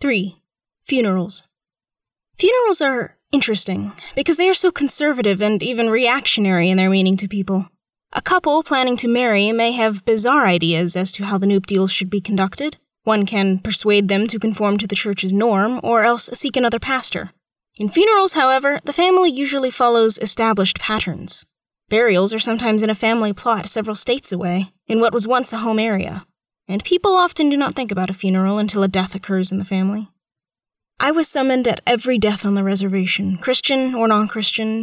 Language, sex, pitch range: English, female, 195-255 Hz